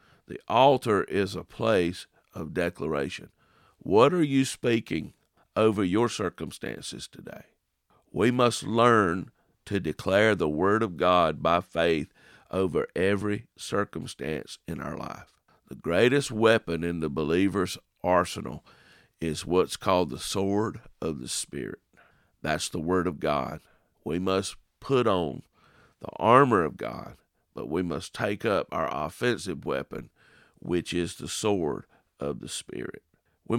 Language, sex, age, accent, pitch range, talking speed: English, male, 50-69, American, 85-110 Hz, 135 wpm